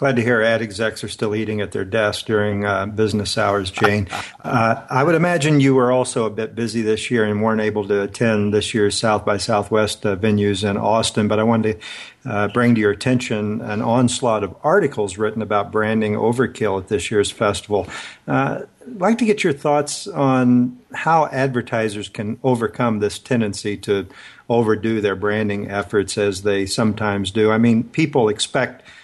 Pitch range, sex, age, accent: 105-120 Hz, male, 50-69, American